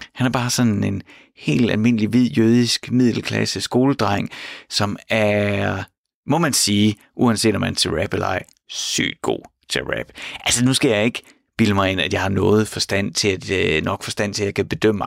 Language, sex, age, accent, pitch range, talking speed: Danish, male, 30-49, native, 105-145 Hz, 190 wpm